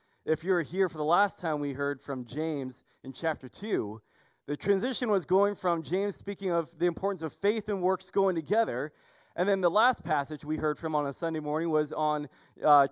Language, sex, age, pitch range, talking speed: English, male, 30-49, 155-205 Hz, 215 wpm